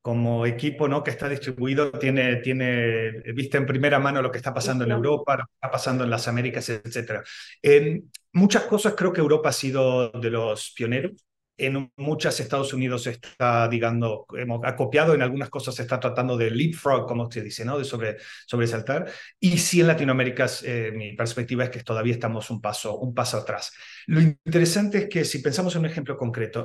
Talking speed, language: 185 wpm, Spanish